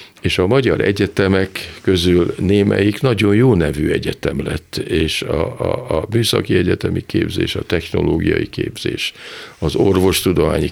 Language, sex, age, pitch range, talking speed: Hungarian, male, 50-69, 85-110 Hz, 130 wpm